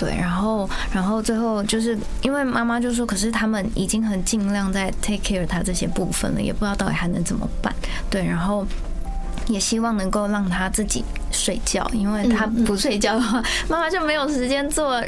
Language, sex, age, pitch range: Chinese, female, 20-39, 185-230 Hz